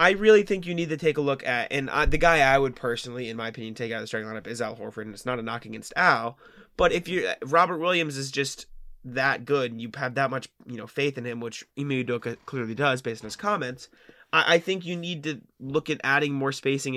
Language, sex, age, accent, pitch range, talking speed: English, male, 20-39, American, 120-155 Hz, 260 wpm